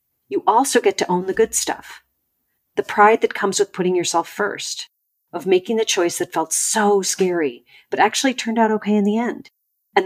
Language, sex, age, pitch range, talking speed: English, female, 40-59, 150-215 Hz, 195 wpm